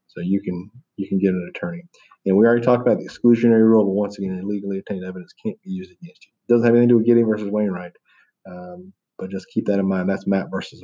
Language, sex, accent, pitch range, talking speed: English, male, American, 100-135 Hz, 260 wpm